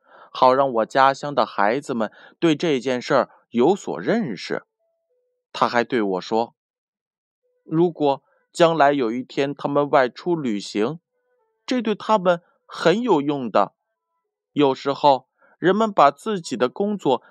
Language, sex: Chinese, male